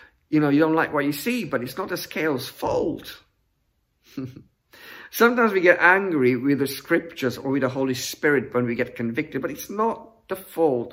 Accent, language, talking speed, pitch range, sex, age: British, English, 190 wpm, 125-165 Hz, male, 50-69